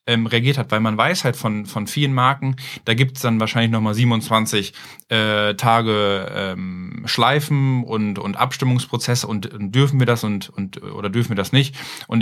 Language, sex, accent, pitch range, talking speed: German, male, German, 105-130 Hz, 180 wpm